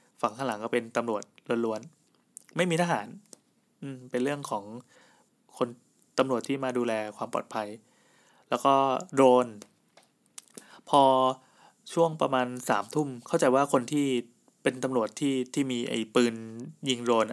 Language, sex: Thai, male